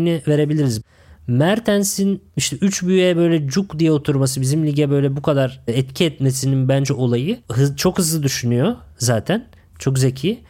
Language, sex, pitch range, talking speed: Turkish, male, 135-175 Hz, 145 wpm